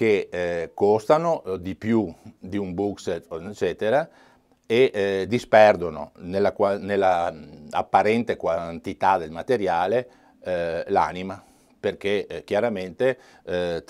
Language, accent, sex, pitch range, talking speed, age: Italian, native, male, 90-110 Hz, 110 wpm, 50-69